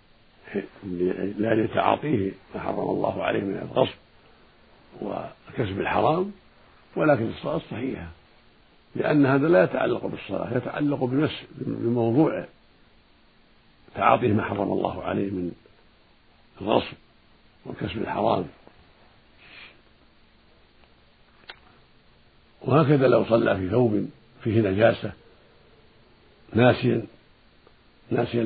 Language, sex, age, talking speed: Arabic, male, 60-79, 80 wpm